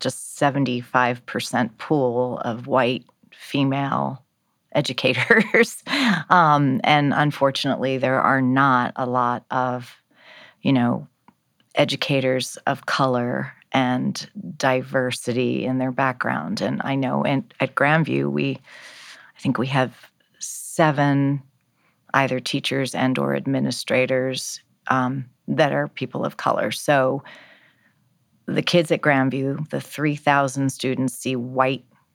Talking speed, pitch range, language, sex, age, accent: 110 wpm, 125-145 Hz, English, female, 40-59, American